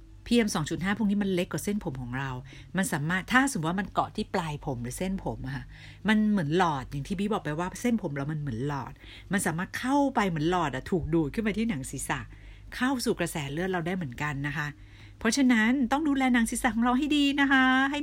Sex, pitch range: female, 145-215 Hz